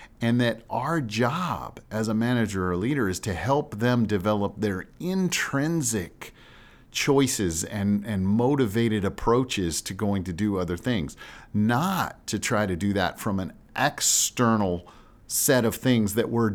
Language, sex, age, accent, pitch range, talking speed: English, male, 50-69, American, 90-125 Hz, 150 wpm